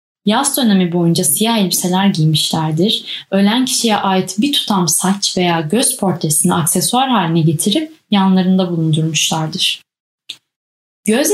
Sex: female